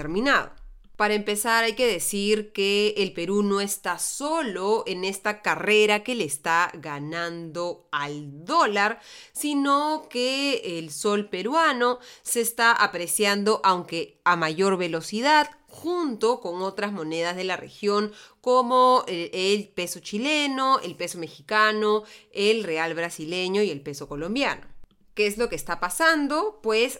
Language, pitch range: Spanish, 170-230 Hz